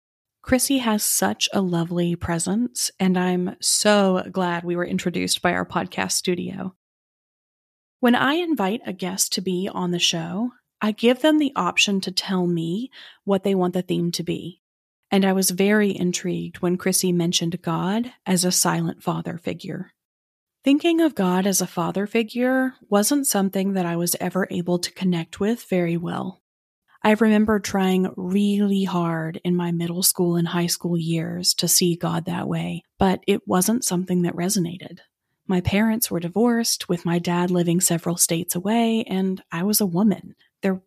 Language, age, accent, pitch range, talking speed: English, 30-49, American, 175-210 Hz, 170 wpm